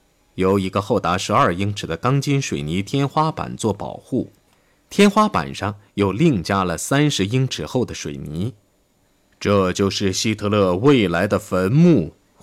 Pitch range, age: 90-135 Hz, 20-39